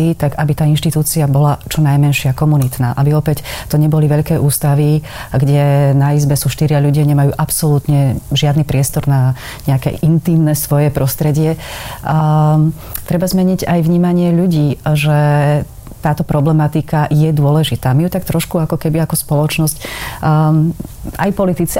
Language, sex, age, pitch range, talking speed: Slovak, female, 30-49, 140-160 Hz, 140 wpm